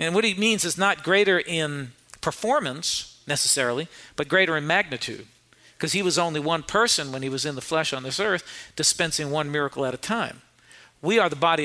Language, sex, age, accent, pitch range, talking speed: English, male, 50-69, American, 155-190 Hz, 200 wpm